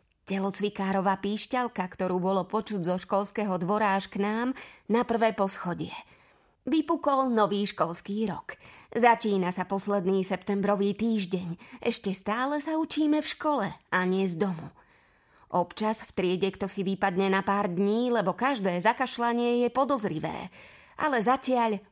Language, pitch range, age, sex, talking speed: Slovak, 195-240 Hz, 30-49, female, 135 wpm